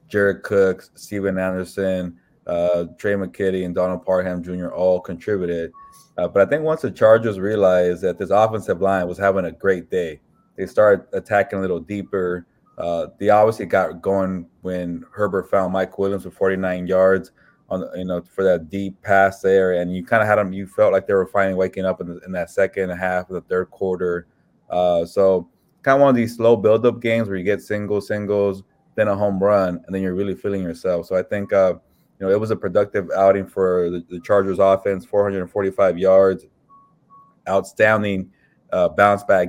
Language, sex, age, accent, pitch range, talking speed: English, male, 20-39, American, 90-100 Hz, 195 wpm